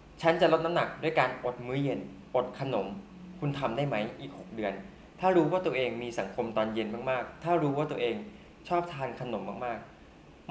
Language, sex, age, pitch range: Thai, male, 20-39, 110-155 Hz